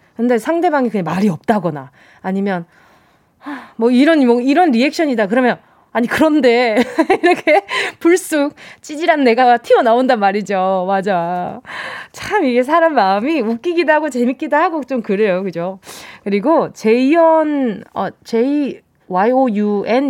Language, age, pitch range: Korean, 20-39, 190-255 Hz